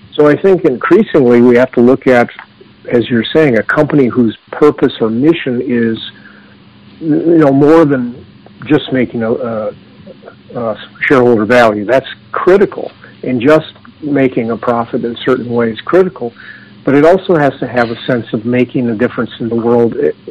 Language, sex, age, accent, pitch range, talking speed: English, male, 50-69, American, 115-145 Hz, 170 wpm